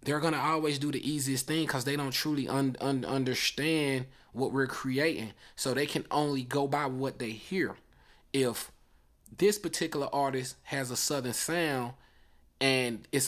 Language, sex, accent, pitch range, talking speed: English, male, American, 125-145 Hz, 160 wpm